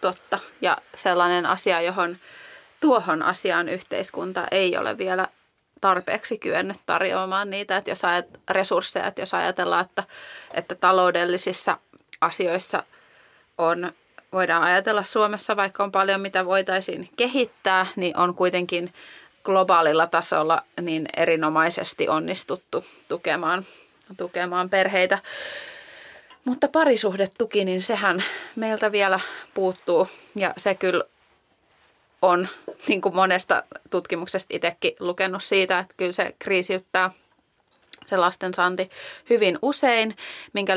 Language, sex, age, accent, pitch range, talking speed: Finnish, female, 30-49, native, 180-205 Hz, 110 wpm